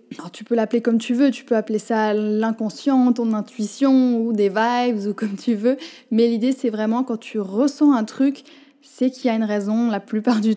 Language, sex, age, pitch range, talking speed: French, female, 20-39, 215-260 Hz, 215 wpm